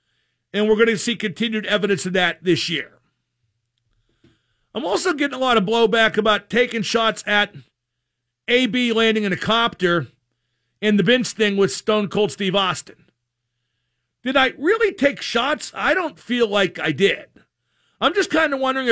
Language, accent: English, American